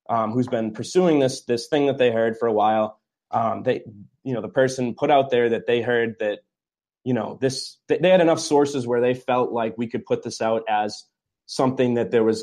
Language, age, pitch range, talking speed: English, 20-39, 110-135 Hz, 225 wpm